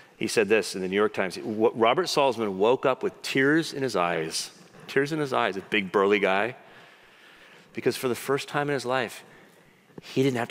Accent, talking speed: American, 205 wpm